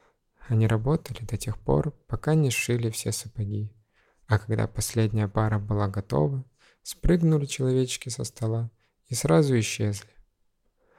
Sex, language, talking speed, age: male, Russian, 125 wpm, 20-39